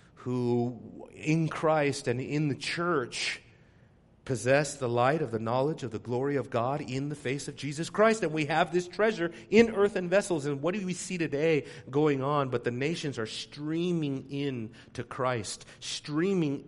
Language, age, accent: English, 40-59, American